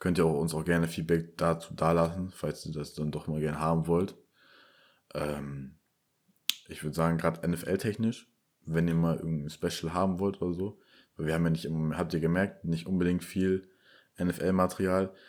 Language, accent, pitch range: German, German, 80-90 Hz